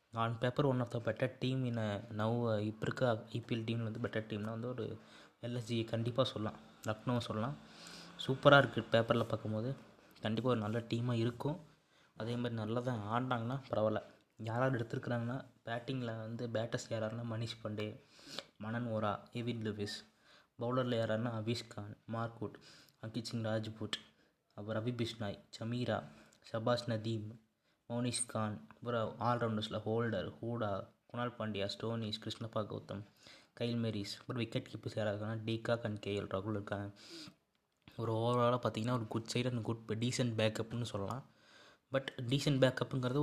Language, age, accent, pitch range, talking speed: Tamil, 20-39, native, 110-125 Hz, 135 wpm